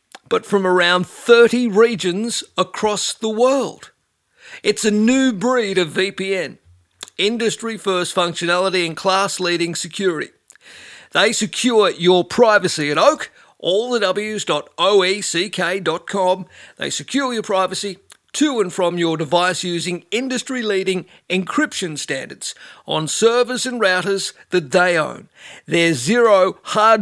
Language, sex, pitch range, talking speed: English, male, 180-225 Hz, 120 wpm